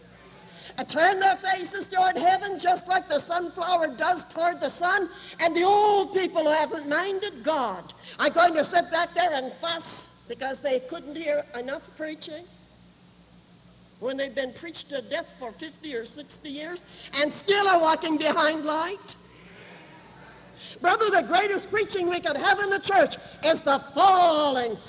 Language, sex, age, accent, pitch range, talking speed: English, female, 60-79, American, 260-350 Hz, 160 wpm